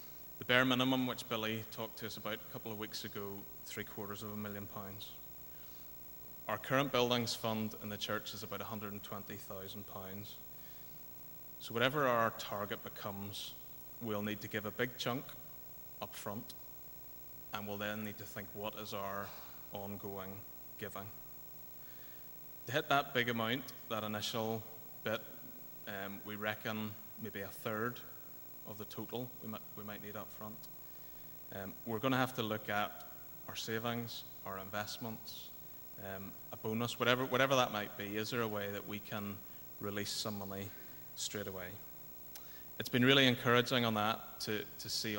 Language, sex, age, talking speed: English, male, 20-39, 155 wpm